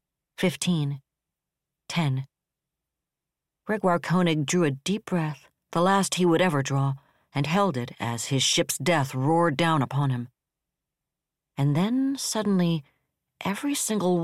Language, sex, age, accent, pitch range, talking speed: English, female, 60-79, American, 140-185 Hz, 125 wpm